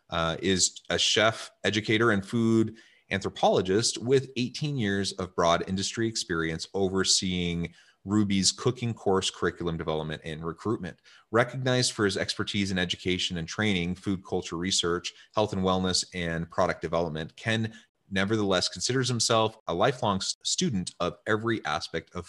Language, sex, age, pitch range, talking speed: English, male, 30-49, 90-110 Hz, 135 wpm